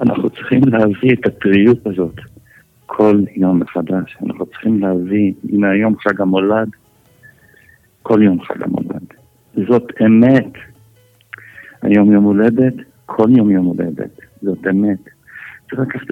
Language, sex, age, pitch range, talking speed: Hebrew, male, 60-79, 100-115 Hz, 125 wpm